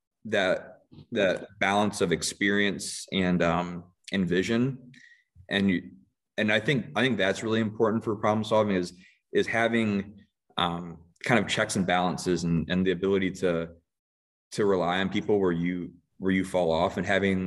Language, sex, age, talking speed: English, male, 20-39, 165 wpm